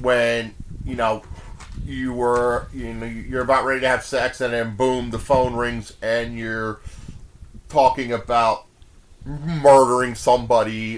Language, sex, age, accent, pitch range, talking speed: English, male, 30-49, American, 110-130 Hz, 135 wpm